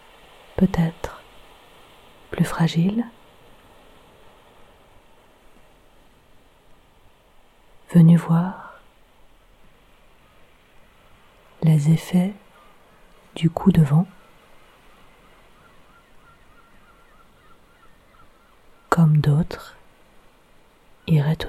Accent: French